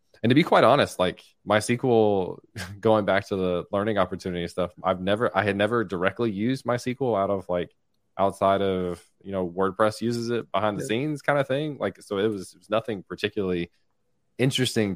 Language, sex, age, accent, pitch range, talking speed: English, male, 20-39, American, 90-110 Hz, 190 wpm